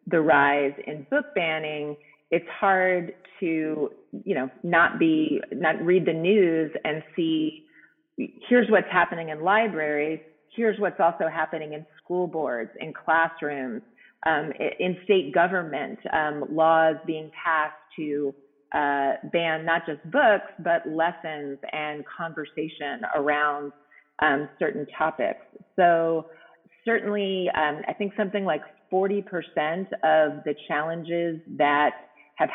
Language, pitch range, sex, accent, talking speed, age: English, 150-180 Hz, female, American, 125 wpm, 30-49